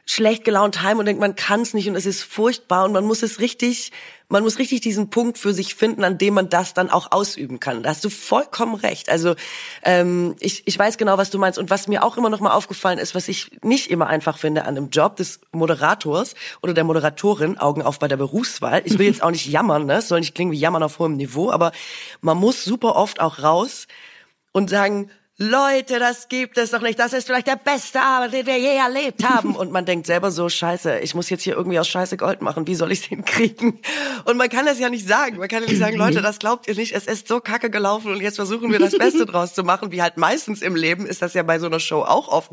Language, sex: German, female